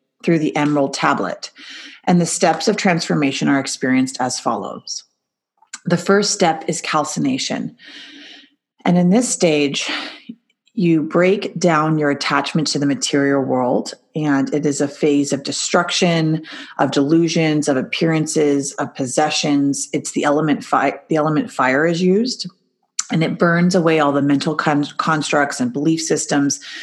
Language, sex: English, female